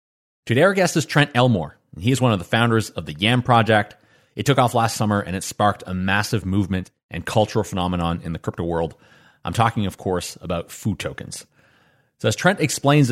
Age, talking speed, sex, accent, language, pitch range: 30-49, 210 wpm, male, American, English, 100-130 Hz